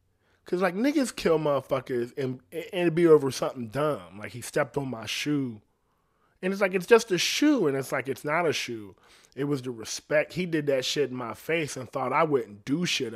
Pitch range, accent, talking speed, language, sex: 125-175 Hz, American, 220 wpm, English, male